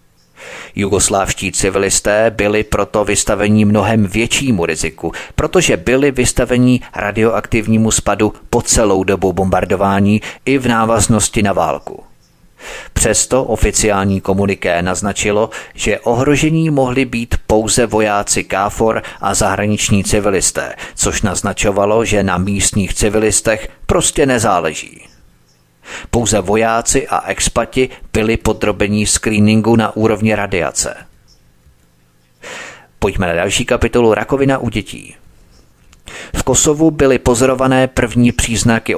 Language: Czech